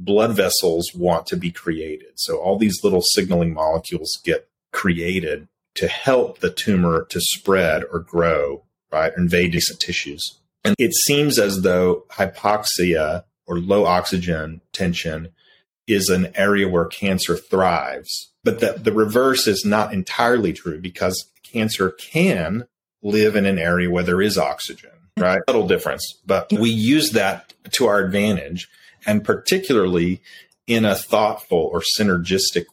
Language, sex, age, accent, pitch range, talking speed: English, male, 30-49, American, 90-110 Hz, 145 wpm